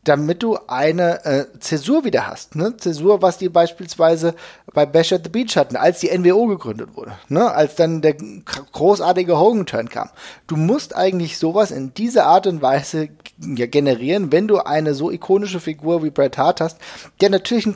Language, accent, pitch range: German, German, 145-195 Hz